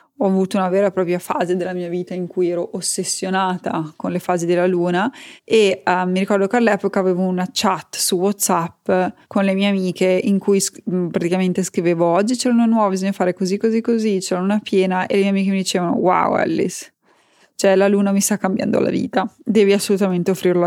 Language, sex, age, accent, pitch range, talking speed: Italian, female, 20-39, native, 185-215 Hz, 200 wpm